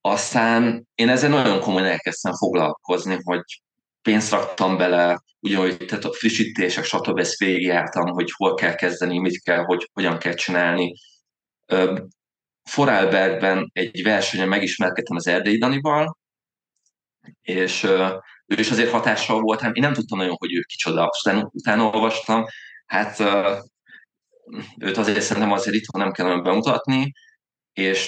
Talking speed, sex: 130 wpm, male